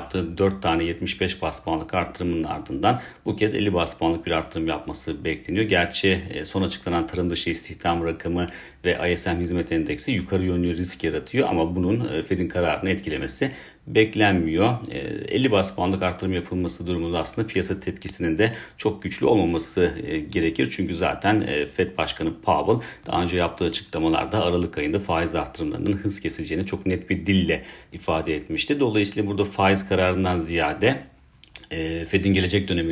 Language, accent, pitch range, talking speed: Turkish, native, 85-95 Hz, 145 wpm